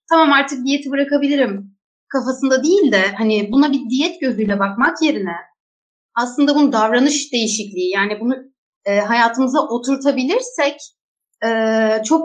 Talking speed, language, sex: 120 wpm, Turkish, female